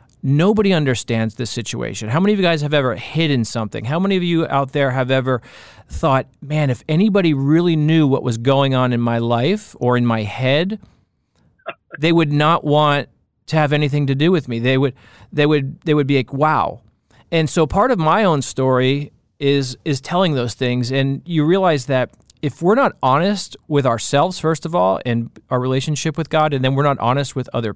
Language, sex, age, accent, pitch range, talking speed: English, male, 40-59, American, 120-155 Hz, 205 wpm